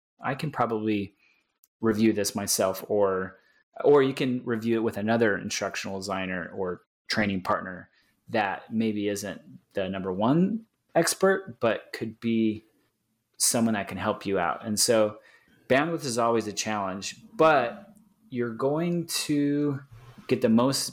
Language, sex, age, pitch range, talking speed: English, male, 30-49, 105-130 Hz, 140 wpm